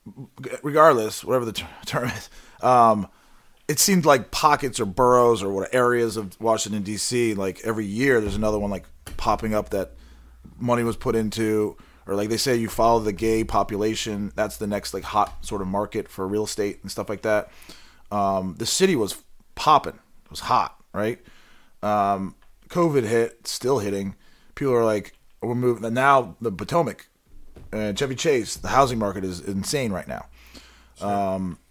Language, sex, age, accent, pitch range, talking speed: English, male, 30-49, American, 95-110 Hz, 170 wpm